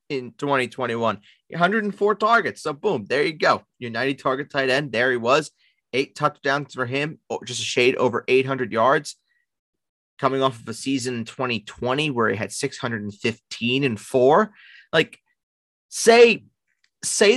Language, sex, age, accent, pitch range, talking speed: English, male, 30-49, American, 100-140 Hz, 150 wpm